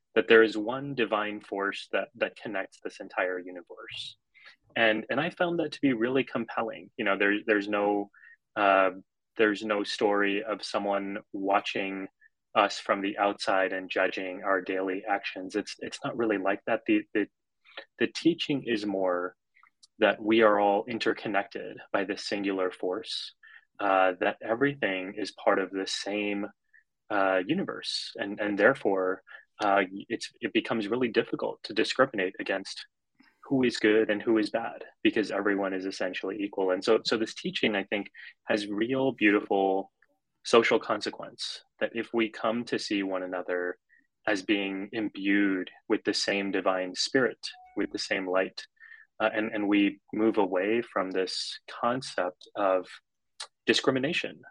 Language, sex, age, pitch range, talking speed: English, male, 20-39, 95-110 Hz, 155 wpm